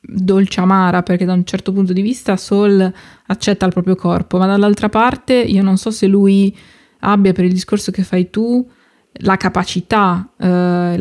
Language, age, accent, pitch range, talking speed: Italian, 20-39, native, 180-195 Hz, 175 wpm